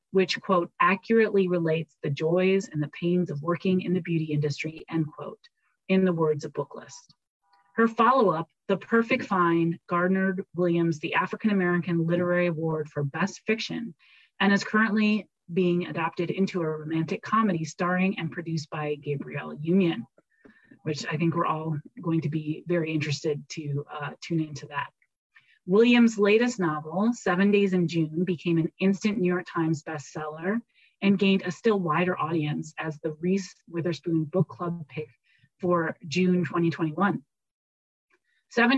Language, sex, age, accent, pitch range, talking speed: English, female, 30-49, American, 160-195 Hz, 150 wpm